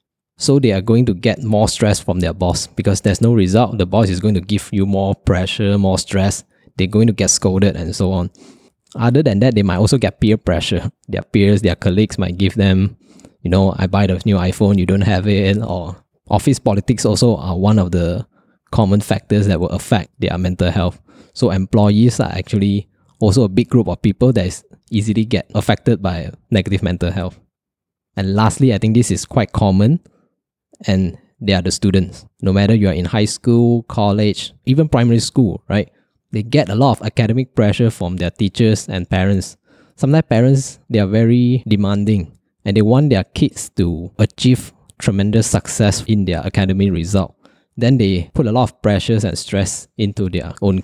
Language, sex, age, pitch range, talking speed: English, male, 10-29, 95-115 Hz, 190 wpm